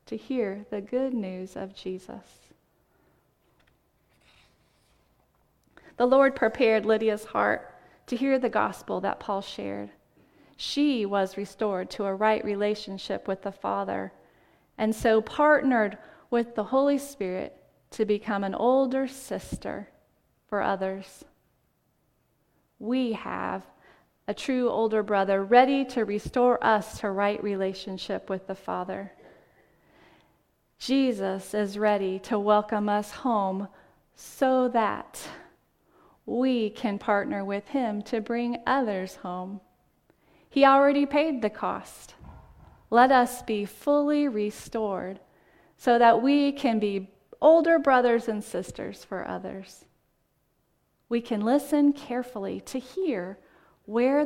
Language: English